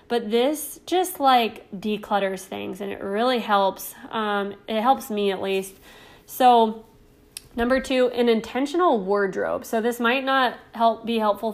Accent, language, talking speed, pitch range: American, English, 150 wpm, 200-235 Hz